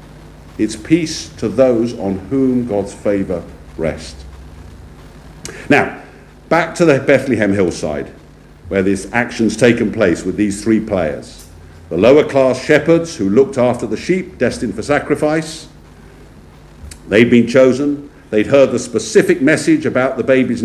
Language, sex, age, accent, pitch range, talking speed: English, male, 50-69, British, 80-135 Hz, 135 wpm